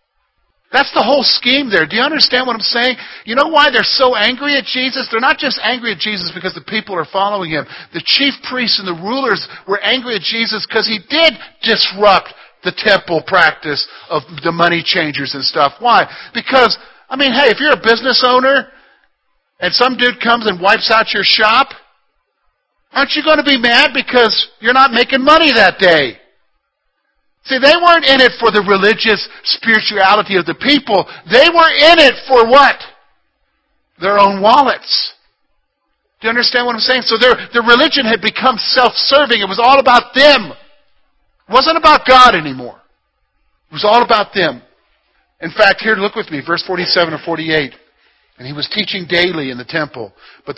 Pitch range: 185-265 Hz